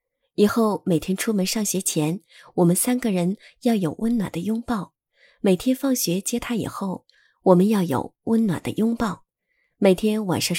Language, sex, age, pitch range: Chinese, female, 30-49, 170-235 Hz